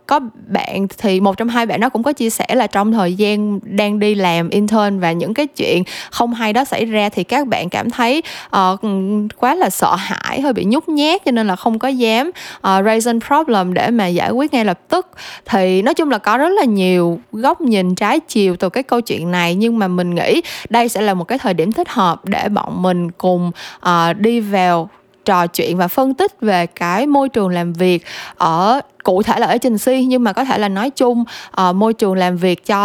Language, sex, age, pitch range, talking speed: Vietnamese, female, 10-29, 185-250 Hz, 230 wpm